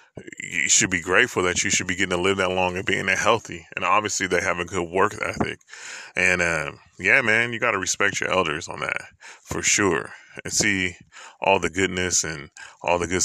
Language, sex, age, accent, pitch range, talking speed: English, male, 30-49, American, 90-105 Hz, 215 wpm